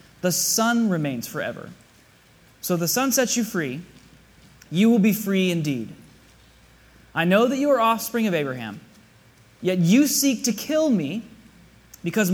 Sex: male